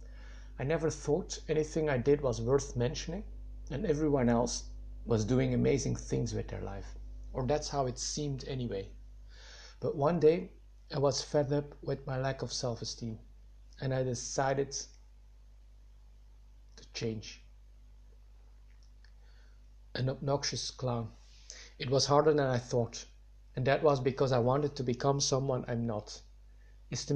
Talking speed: 140 wpm